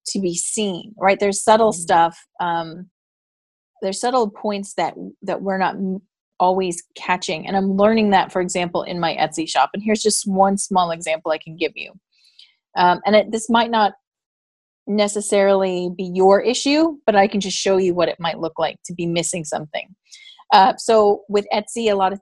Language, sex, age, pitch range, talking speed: English, female, 30-49, 180-210 Hz, 185 wpm